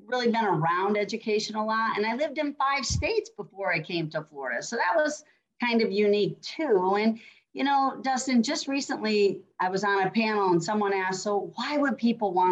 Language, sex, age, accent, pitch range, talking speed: English, female, 40-59, American, 180-240 Hz, 205 wpm